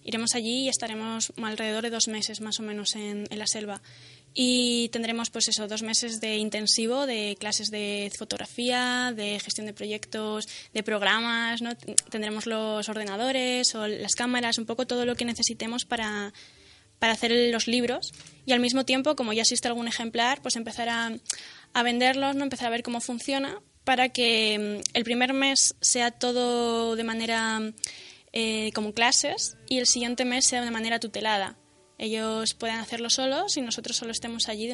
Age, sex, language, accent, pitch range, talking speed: 10-29, female, Spanish, Spanish, 210-240 Hz, 175 wpm